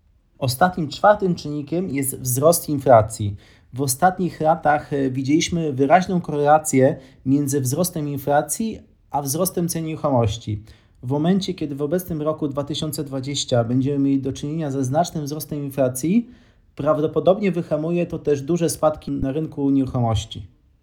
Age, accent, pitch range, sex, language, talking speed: 30-49, native, 140-180 Hz, male, Polish, 125 wpm